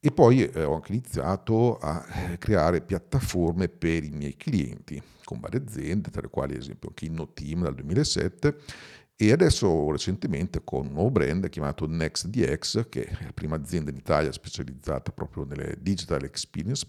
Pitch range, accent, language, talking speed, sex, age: 75-95 Hz, native, Italian, 165 wpm, male, 50-69